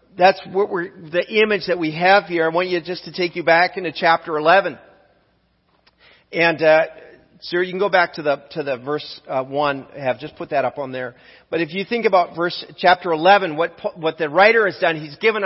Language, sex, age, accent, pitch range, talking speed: English, male, 40-59, American, 160-200 Hz, 235 wpm